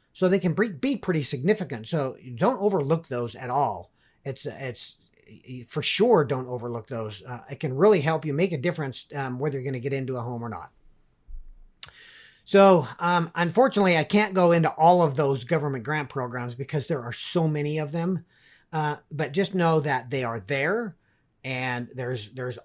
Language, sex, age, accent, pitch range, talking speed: English, male, 40-59, American, 130-170 Hz, 185 wpm